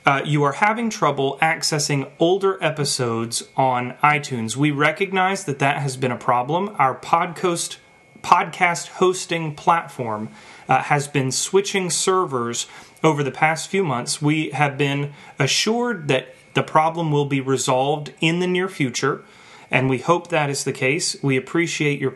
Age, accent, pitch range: 30-49, American, 130-170 Hz